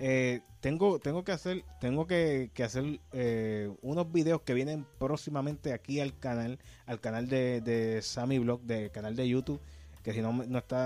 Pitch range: 115-145 Hz